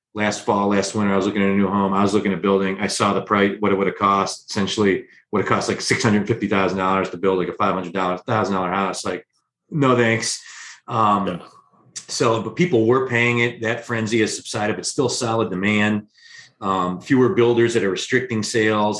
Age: 30-49